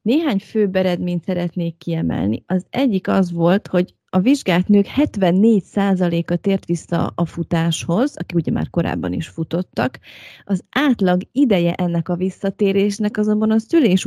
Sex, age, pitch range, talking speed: female, 30-49, 170-205 Hz, 140 wpm